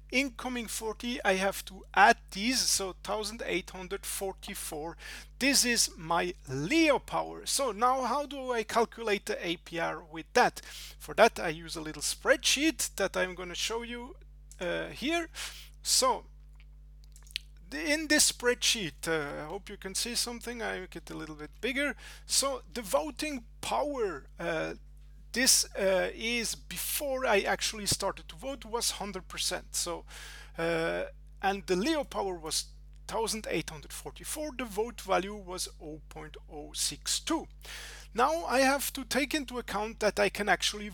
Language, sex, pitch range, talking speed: English, male, 175-245 Hz, 145 wpm